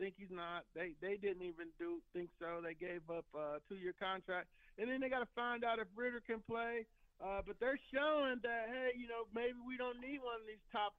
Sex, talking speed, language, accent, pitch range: male, 240 wpm, English, American, 185-230 Hz